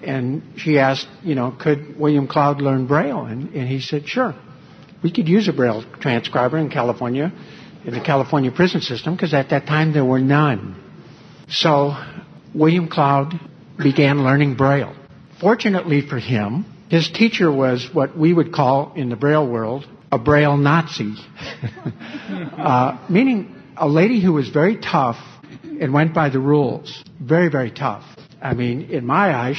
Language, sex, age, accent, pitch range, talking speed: English, male, 60-79, American, 135-165 Hz, 160 wpm